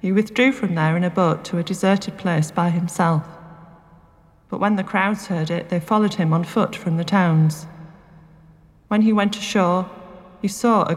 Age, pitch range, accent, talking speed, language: 30-49, 160-200 Hz, British, 185 wpm, English